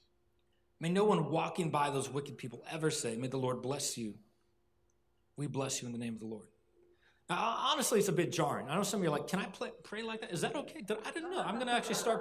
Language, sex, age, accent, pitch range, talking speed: English, male, 30-49, American, 130-185 Hz, 260 wpm